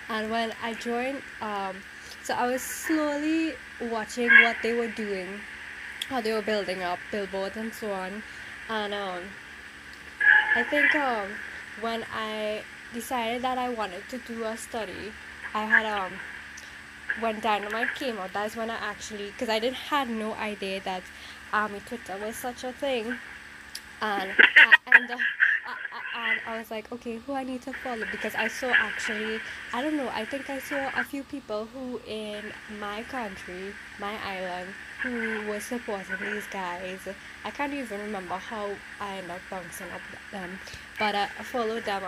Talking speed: 165 wpm